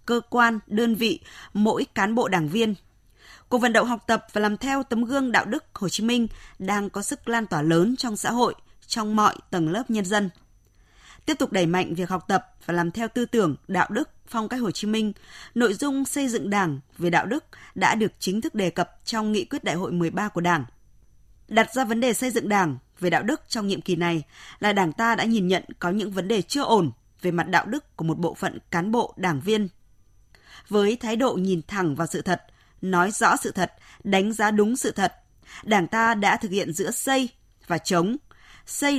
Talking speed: 225 wpm